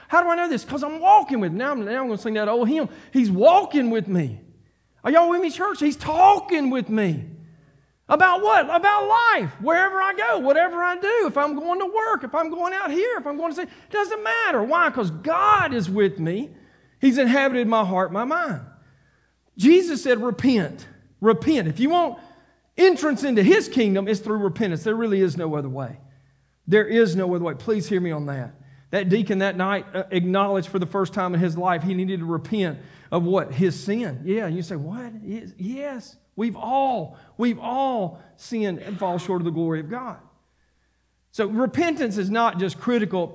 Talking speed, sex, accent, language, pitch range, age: 200 wpm, male, American, English, 165-270 Hz, 40-59